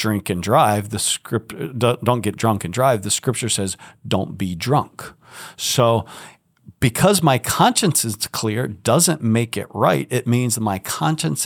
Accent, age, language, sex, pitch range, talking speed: American, 50-69, English, male, 100-125 Hz, 155 wpm